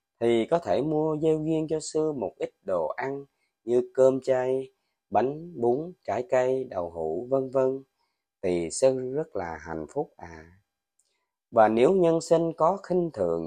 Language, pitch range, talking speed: Vietnamese, 105-155 Hz, 165 wpm